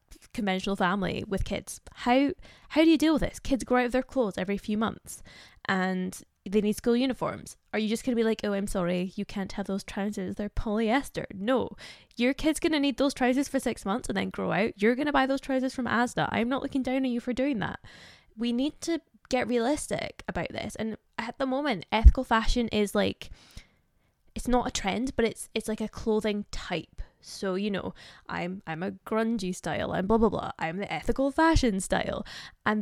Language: English